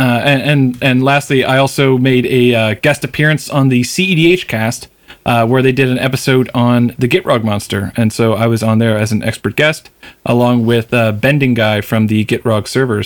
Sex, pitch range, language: male, 115-140 Hz, English